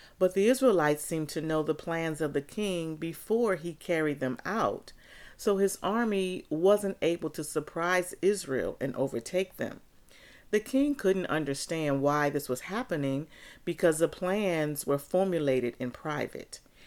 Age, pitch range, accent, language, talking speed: 40-59, 140-195 Hz, American, English, 150 wpm